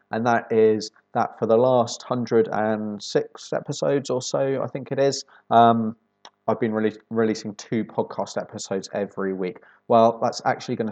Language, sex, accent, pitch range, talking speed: English, male, British, 100-115 Hz, 155 wpm